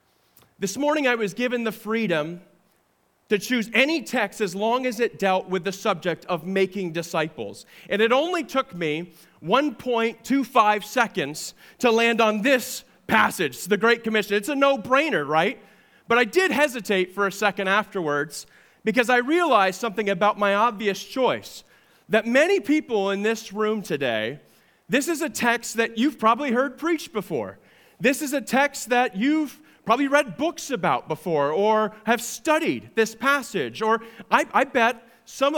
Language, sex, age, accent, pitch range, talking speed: English, male, 30-49, American, 205-265 Hz, 160 wpm